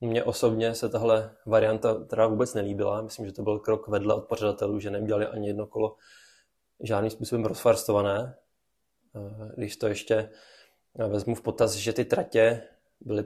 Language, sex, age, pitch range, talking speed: Czech, male, 20-39, 105-110 Hz, 155 wpm